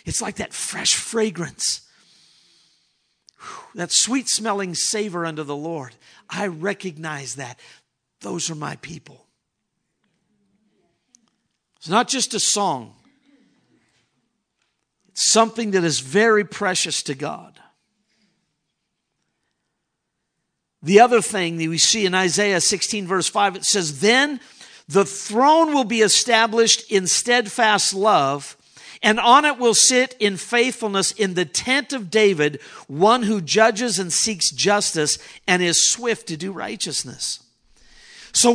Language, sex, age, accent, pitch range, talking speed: English, male, 50-69, American, 195-245 Hz, 125 wpm